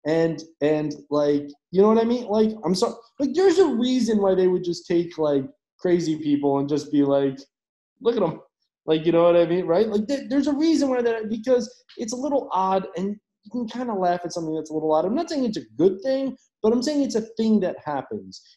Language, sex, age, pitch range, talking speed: English, male, 20-39, 155-240 Hz, 245 wpm